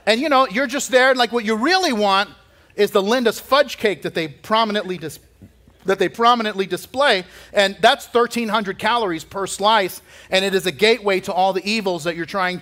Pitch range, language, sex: 160-230 Hz, English, male